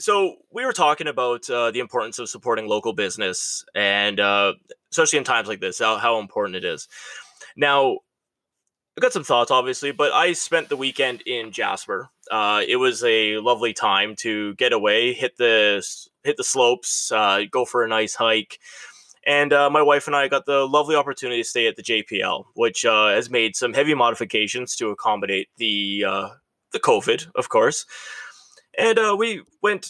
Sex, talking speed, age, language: male, 185 wpm, 20-39, English